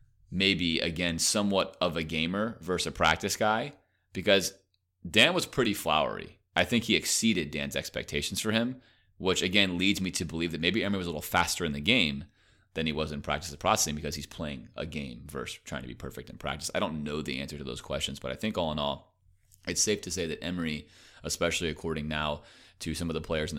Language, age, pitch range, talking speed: English, 30-49, 75-100 Hz, 220 wpm